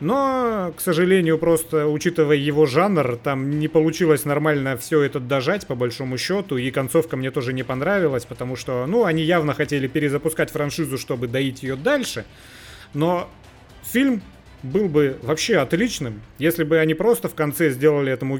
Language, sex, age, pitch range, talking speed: Russian, male, 30-49, 135-170 Hz, 160 wpm